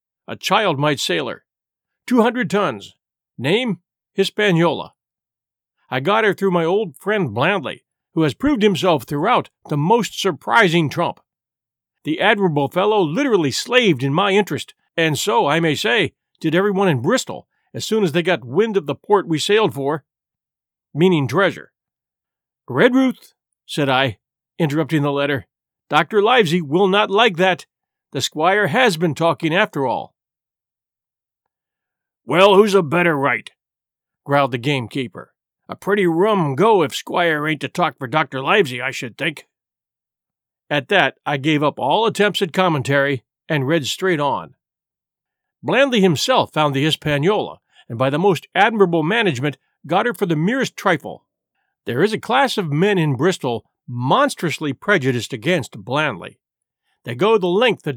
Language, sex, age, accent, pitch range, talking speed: English, male, 50-69, American, 145-200 Hz, 150 wpm